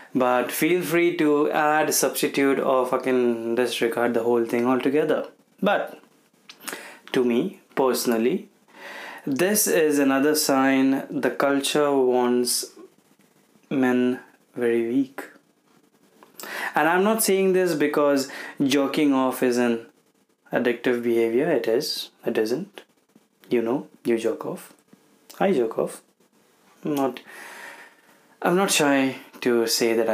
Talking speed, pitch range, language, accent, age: 115 wpm, 125-150 Hz, Hindi, native, 20-39